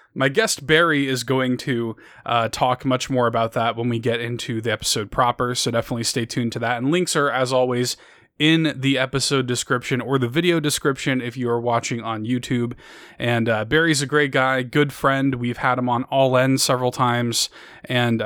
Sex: male